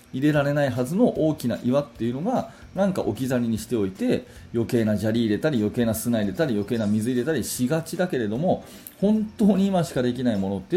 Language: Japanese